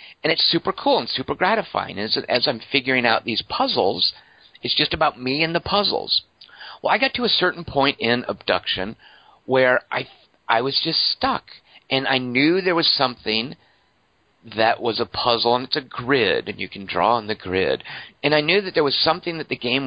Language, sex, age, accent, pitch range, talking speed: English, male, 50-69, American, 110-145 Hz, 200 wpm